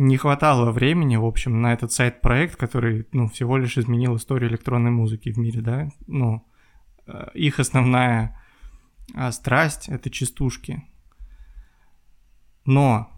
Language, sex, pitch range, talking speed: Russian, male, 115-135 Hz, 130 wpm